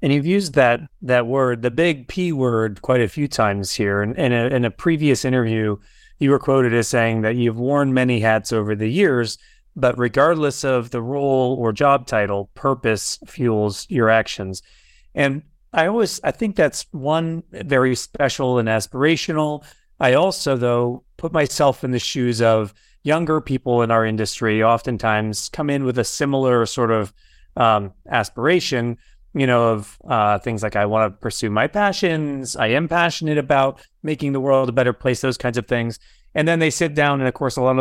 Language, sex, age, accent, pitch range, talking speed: English, male, 30-49, American, 115-155 Hz, 185 wpm